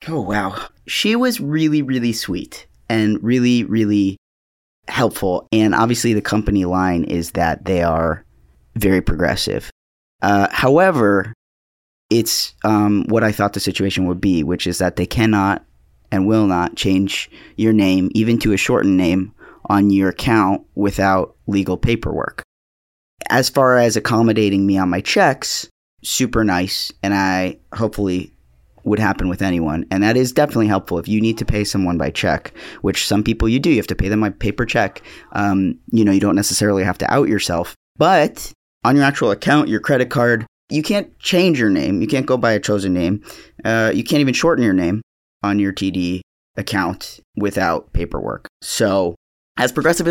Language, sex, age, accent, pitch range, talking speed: English, male, 30-49, American, 95-115 Hz, 170 wpm